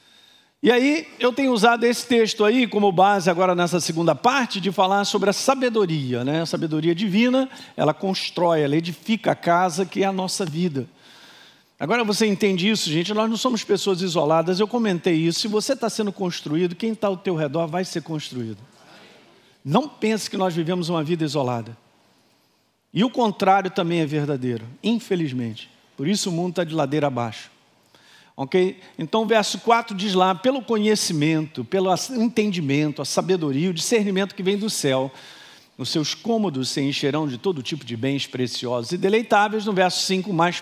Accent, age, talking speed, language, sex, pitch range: Brazilian, 50-69, 175 wpm, Portuguese, male, 150-210 Hz